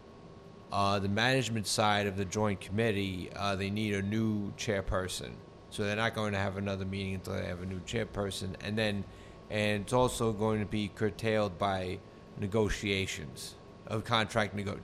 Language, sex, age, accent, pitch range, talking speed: English, male, 30-49, American, 100-110 Hz, 170 wpm